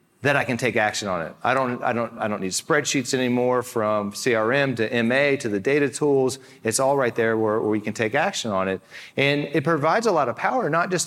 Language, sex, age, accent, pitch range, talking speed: English, male, 30-49, American, 120-150 Hz, 245 wpm